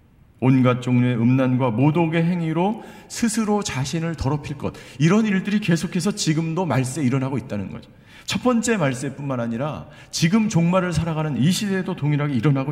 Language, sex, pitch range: Korean, male, 130-180 Hz